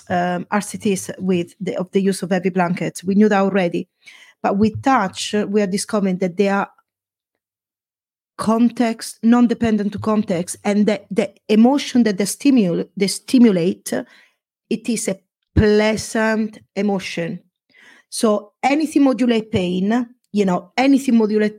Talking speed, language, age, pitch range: 135 wpm, English, 30-49, 190-235 Hz